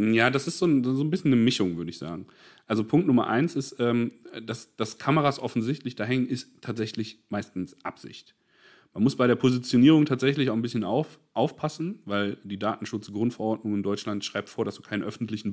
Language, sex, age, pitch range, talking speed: German, male, 30-49, 105-130 Hz, 195 wpm